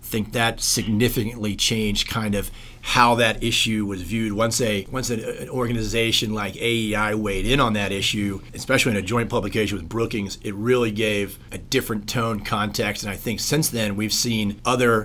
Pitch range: 105-125 Hz